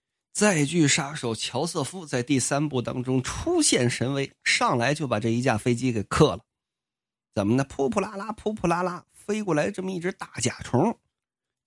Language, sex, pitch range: Chinese, male, 125-200 Hz